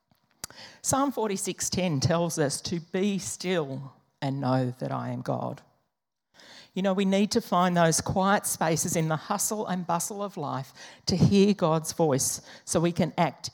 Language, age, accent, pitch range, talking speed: English, 50-69, Australian, 140-175 Hz, 165 wpm